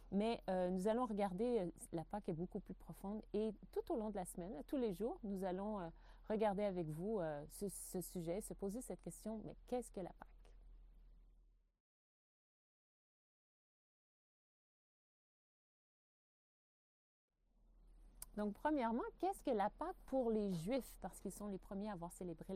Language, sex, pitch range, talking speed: French, female, 175-220 Hz, 155 wpm